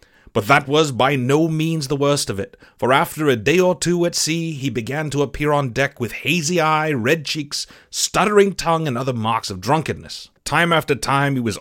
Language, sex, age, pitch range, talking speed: English, male, 30-49, 120-165 Hz, 210 wpm